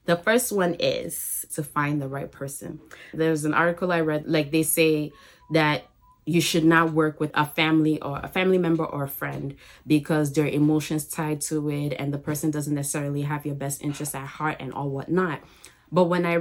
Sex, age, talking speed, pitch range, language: female, 20-39, 200 wpm, 150-170 Hz, English